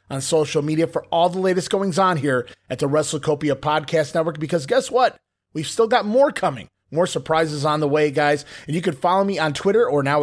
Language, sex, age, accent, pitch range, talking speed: English, male, 30-49, American, 150-205 Hz, 215 wpm